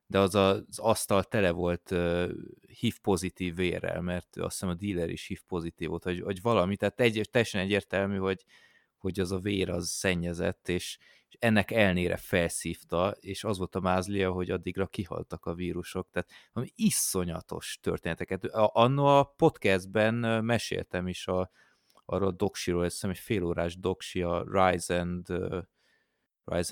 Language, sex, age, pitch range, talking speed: Hungarian, male, 30-49, 85-100 Hz, 155 wpm